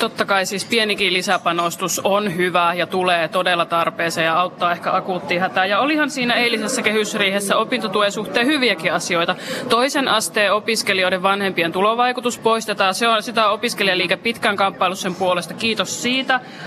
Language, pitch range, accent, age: Finnish, 180-225 Hz, native, 20-39